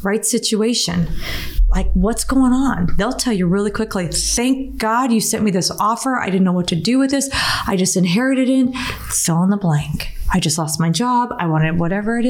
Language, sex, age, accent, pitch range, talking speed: English, female, 30-49, American, 180-230 Hz, 210 wpm